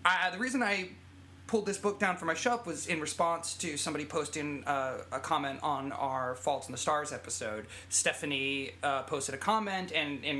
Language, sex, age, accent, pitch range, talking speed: English, male, 30-49, American, 120-170 Hz, 195 wpm